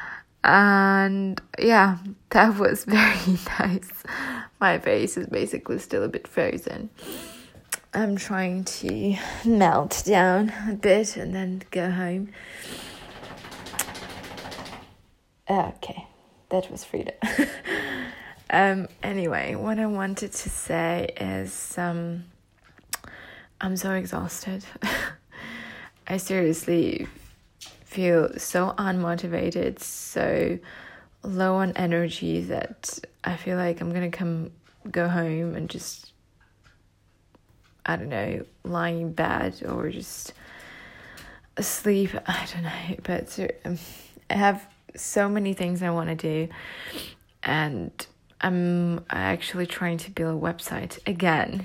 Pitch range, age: 170-195 Hz, 20-39